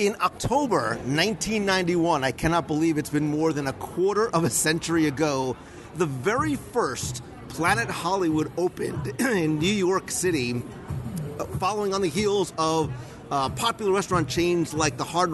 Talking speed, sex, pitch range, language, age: 150 wpm, male, 140-175 Hz, English, 40-59